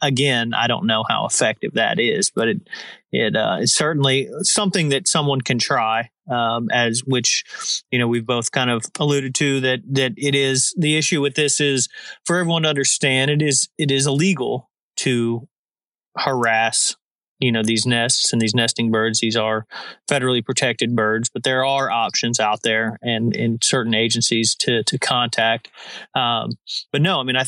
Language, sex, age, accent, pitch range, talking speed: English, male, 30-49, American, 120-145 Hz, 180 wpm